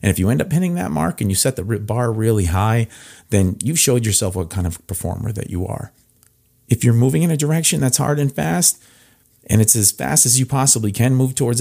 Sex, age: male, 40-59